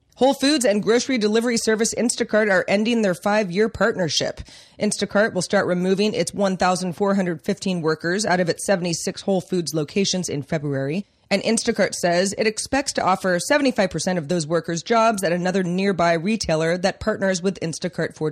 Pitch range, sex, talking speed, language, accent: 170-220 Hz, female, 160 wpm, English, American